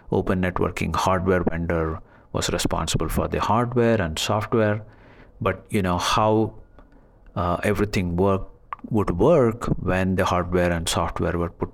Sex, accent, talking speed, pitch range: male, Indian, 140 wpm, 85-100 Hz